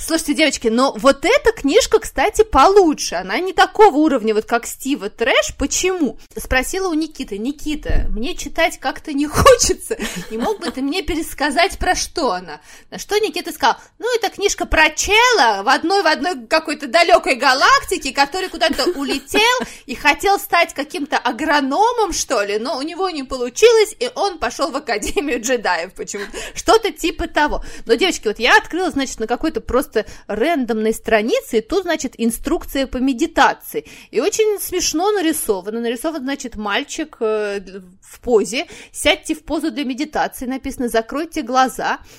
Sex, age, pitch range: female, 20-39, 245-360 Hz